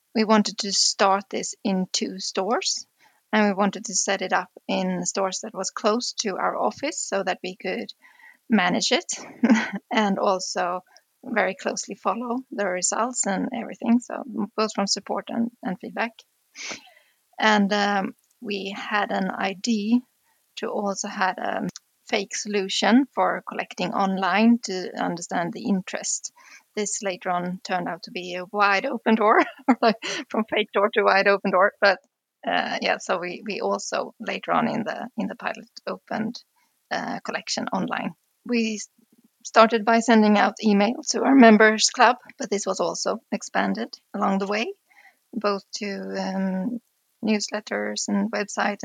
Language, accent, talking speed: English, Swedish, 155 wpm